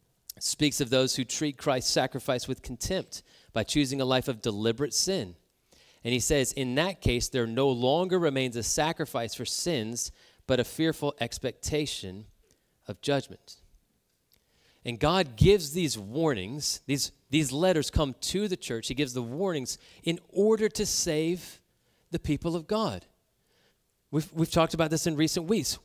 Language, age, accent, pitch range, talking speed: English, 30-49, American, 125-170 Hz, 160 wpm